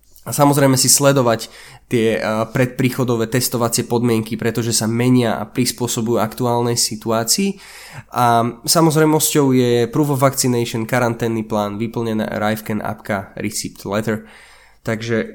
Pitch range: 110-125 Hz